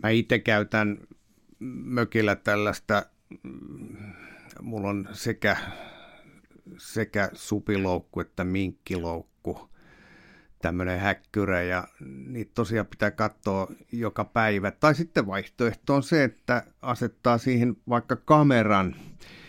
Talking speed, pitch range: 95 wpm, 95-115 Hz